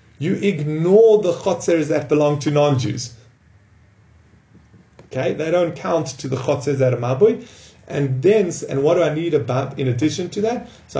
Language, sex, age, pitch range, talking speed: English, male, 30-49, 130-185 Hz, 170 wpm